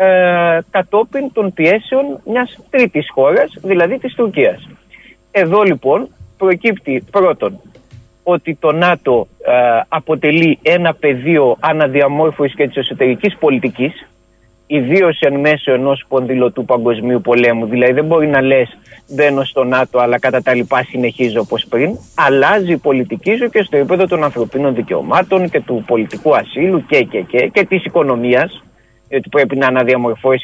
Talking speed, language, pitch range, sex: 140 wpm, Greek, 130-190 Hz, male